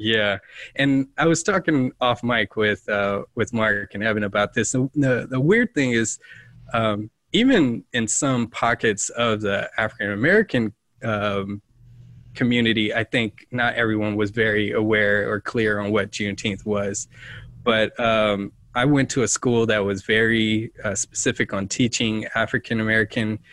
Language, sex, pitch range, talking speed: English, male, 105-125 Hz, 150 wpm